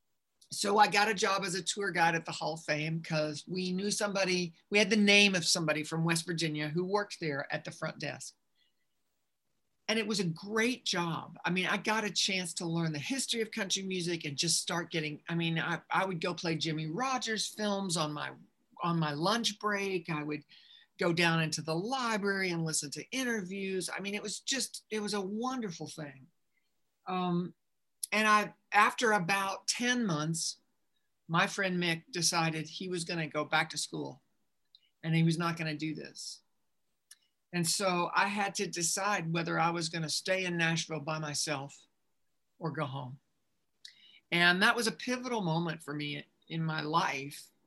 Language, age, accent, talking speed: English, 50-69, American, 190 wpm